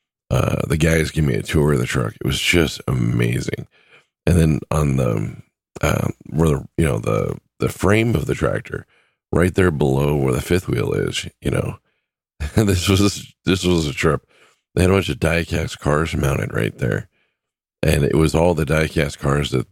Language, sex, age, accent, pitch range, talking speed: English, male, 40-59, American, 70-85 Hz, 190 wpm